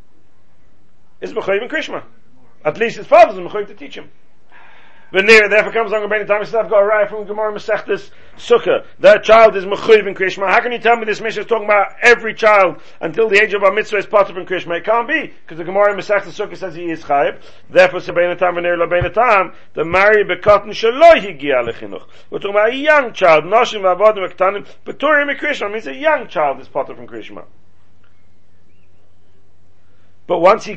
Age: 40-59